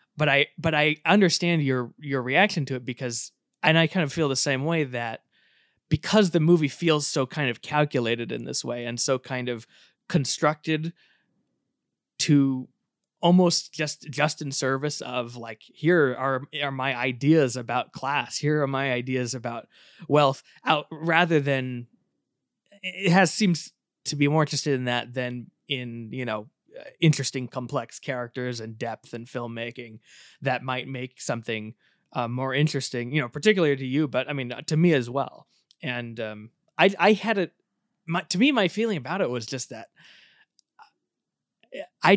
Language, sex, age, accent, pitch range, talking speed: English, male, 20-39, American, 125-160 Hz, 165 wpm